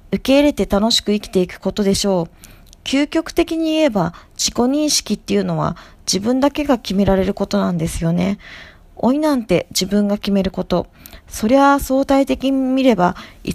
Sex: female